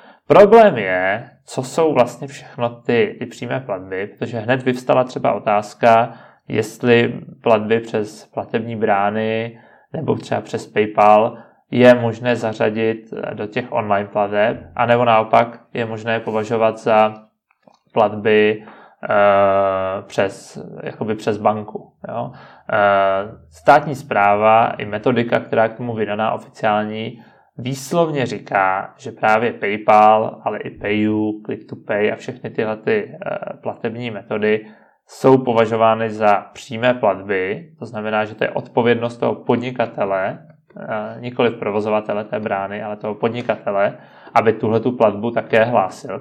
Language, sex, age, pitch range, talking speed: Czech, male, 20-39, 105-125 Hz, 125 wpm